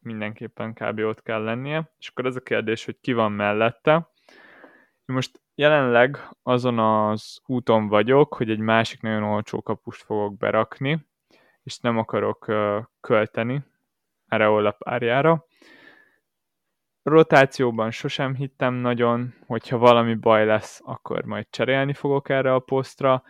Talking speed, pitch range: 130 wpm, 110-130 Hz